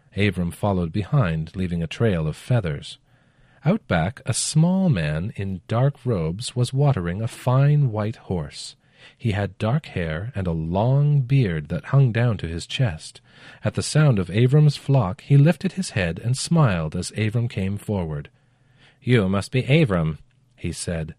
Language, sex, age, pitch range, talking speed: English, male, 40-59, 95-135 Hz, 165 wpm